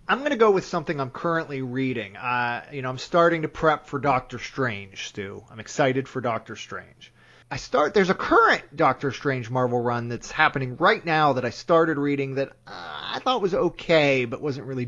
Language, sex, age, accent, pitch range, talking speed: English, male, 30-49, American, 120-155 Hz, 200 wpm